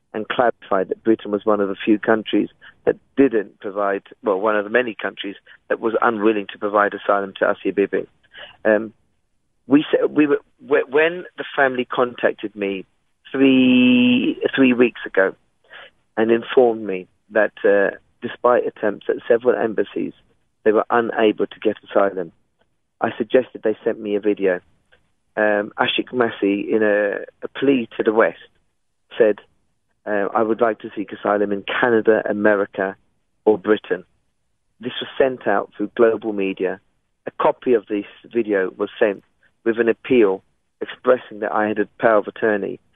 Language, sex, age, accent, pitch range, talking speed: English, male, 40-59, British, 100-120 Hz, 155 wpm